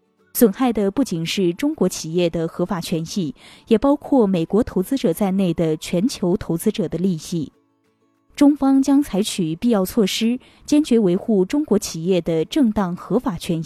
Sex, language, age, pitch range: female, Chinese, 20-39, 175-250 Hz